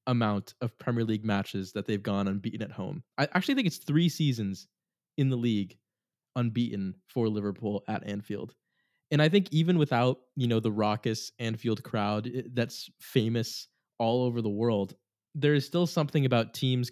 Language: English